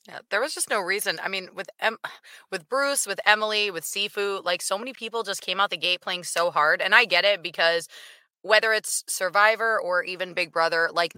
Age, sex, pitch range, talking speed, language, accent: 20-39, female, 180-230 Hz, 215 wpm, English, American